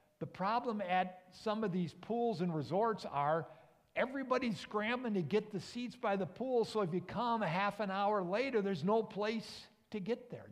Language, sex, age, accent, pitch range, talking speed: English, male, 50-69, American, 155-215 Hz, 190 wpm